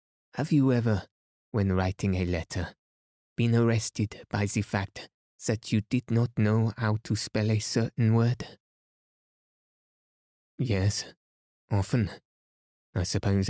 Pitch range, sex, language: 95-115 Hz, male, English